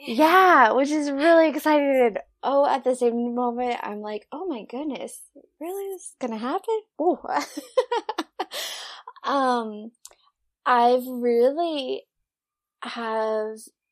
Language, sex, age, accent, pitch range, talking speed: English, female, 10-29, American, 215-290 Hz, 110 wpm